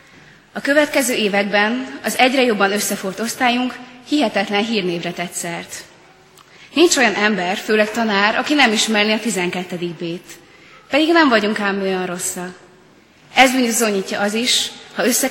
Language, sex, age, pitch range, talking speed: Hungarian, female, 20-39, 195-245 Hz, 135 wpm